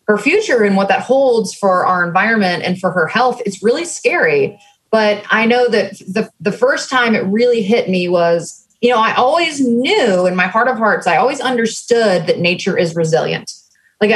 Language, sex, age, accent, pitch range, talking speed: English, female, 20-39, American, 185-230 Hz, 200 wpm